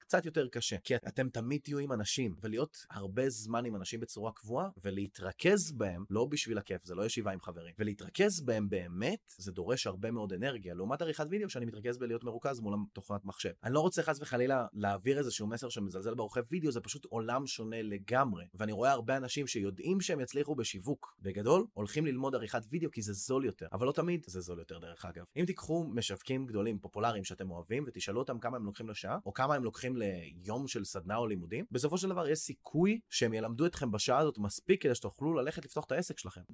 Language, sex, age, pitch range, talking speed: Hebrew, male, 30-49, 105-140 Hz, 160 wpm